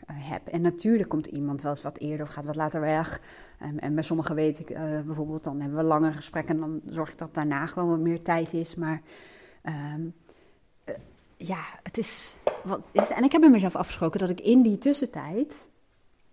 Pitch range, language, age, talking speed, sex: 155-225 Hz, Dutch, 30-49, 210 wpm, female